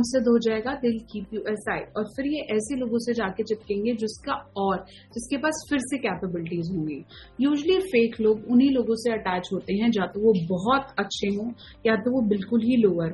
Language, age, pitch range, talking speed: Punjabi, 30-49, 210-250 Hz, 235 wpm